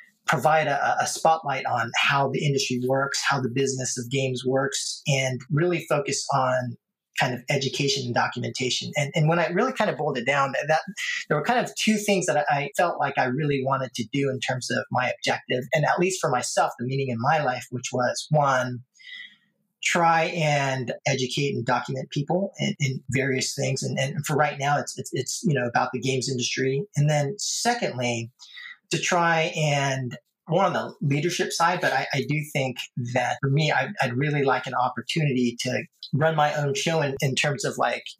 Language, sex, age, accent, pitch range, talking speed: English, male, 30-49, American, 130-160 Hz, 200 wpm